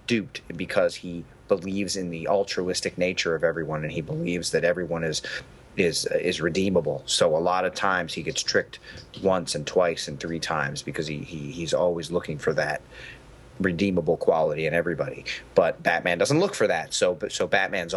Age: 30-49